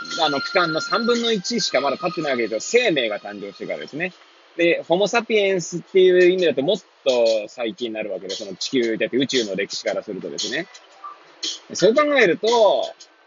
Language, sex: Japanese, male